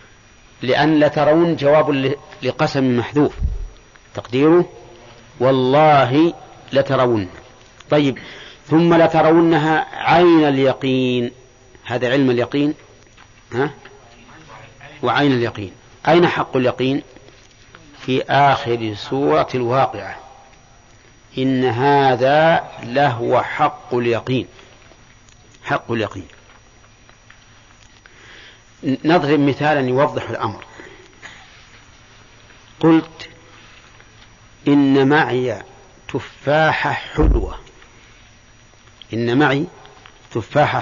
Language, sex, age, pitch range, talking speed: English, male, 50-69, 115-145 Hz, 70 wpm